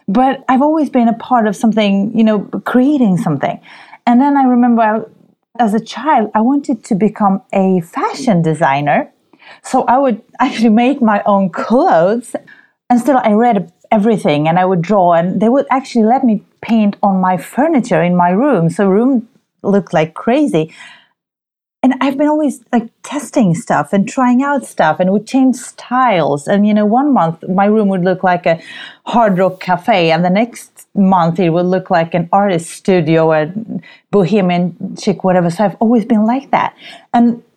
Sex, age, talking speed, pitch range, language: female, 30-49, 180 wpm, 180-245 Hz, English